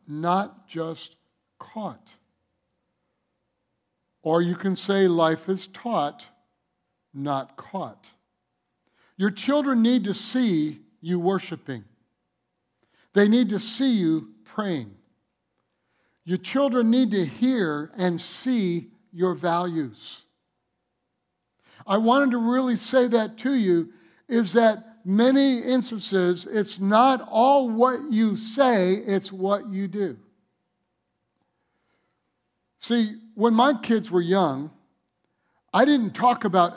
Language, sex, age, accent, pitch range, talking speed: English, male, 60-79, American, 165-230 Hz, 110 wpm